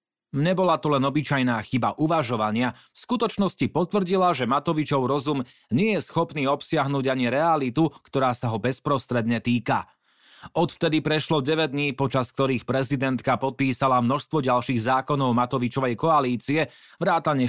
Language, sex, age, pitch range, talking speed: Slovak, male, 30-49, 125-155 Hz, 125 wpm